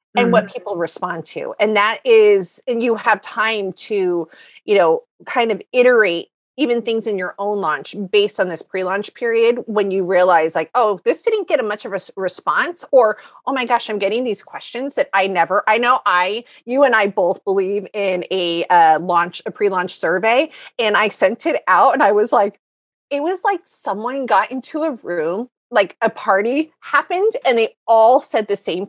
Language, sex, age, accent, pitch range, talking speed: English, female, 30-49, American, 185-250 Hz, 195 wpm